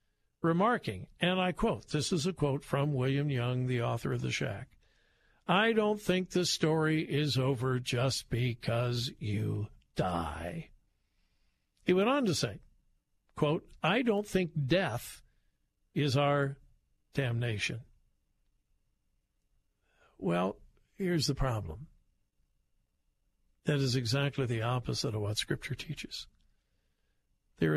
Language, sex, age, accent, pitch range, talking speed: English, male, 60-79, American, 125-170 Hz, 115 wpm